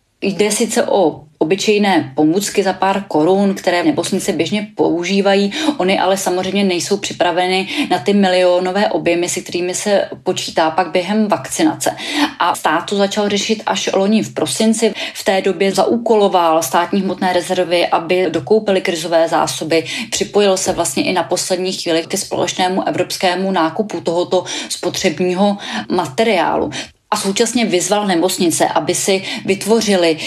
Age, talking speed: 20-39, 135 wpm